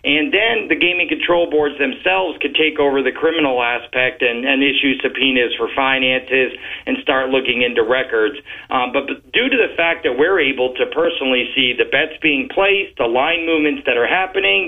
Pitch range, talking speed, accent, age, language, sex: 130-160 Hz, 190 wpm, American, 40-59, English, male